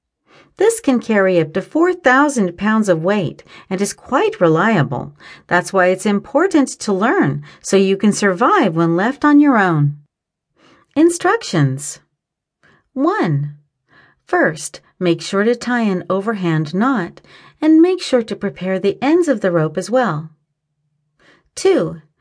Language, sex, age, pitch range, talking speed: English, female, 40-59, 175-260 Hz, 140 wpm